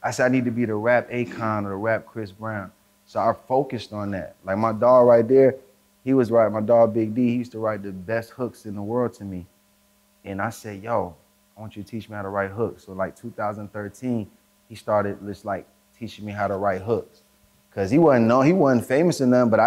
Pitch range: 100-120 Hz